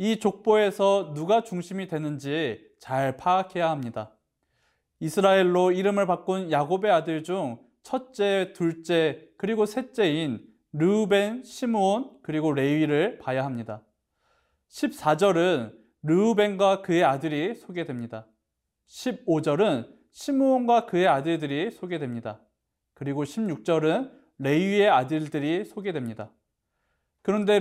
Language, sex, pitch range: Korean, male, 145-200 Hz